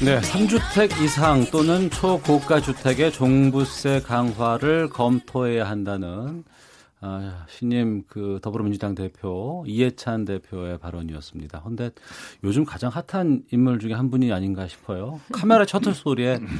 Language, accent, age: Korean, native, 40-59